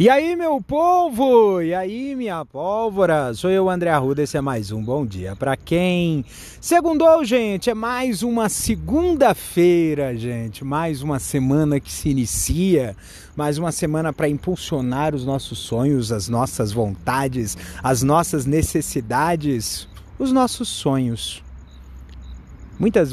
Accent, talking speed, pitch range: Brazilian, 130 wpm, 105-175 Hz